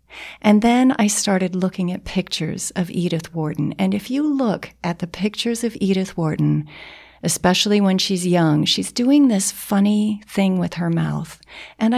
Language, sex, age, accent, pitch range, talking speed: English, female, 40-59, American, 185-220 Hz, 165 wpm